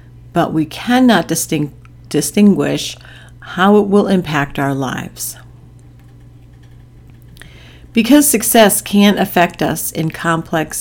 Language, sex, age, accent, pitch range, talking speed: English, female, 50-69, American, 125-180 Hz, 95 wpm